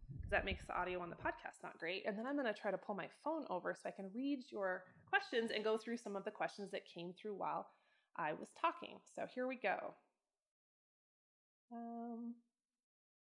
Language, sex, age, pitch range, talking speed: English, female, 20-39, 200-255 Hz, 205 wpm